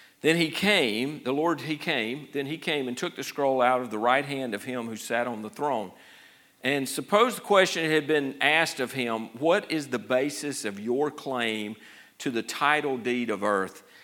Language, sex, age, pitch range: English, male, 50-69, 120-155 Hz